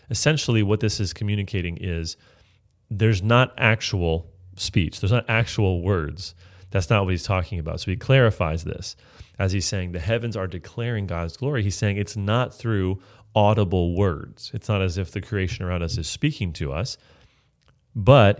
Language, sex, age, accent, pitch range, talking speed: English, male, 30-49, American, 95-115 Hz, 175 wpm